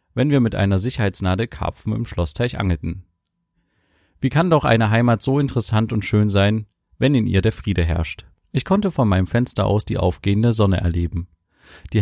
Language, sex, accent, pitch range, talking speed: German, male, German, 95-120 Hz, 180 wpm